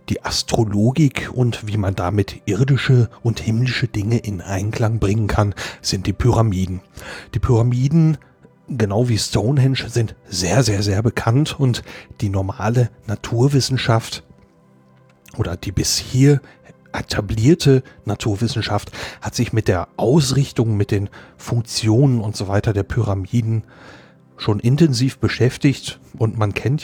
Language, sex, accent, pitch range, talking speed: German, male, German, 100-125 Hz, 125 wpm